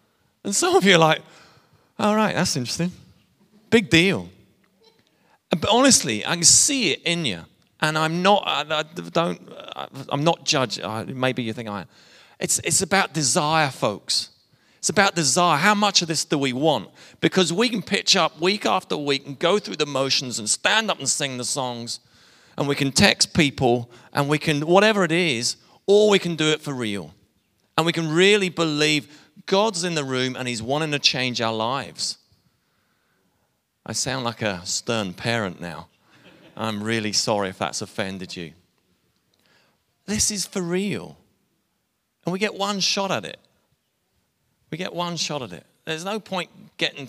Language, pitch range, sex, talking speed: English, 120-180 Hz, male, 175 wpm